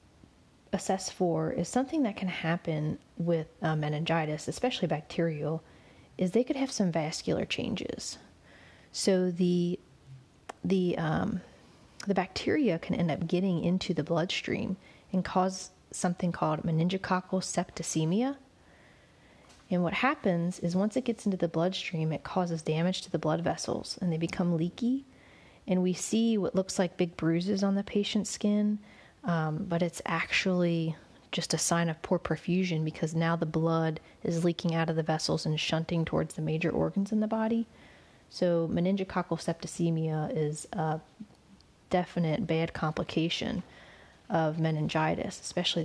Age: 30-49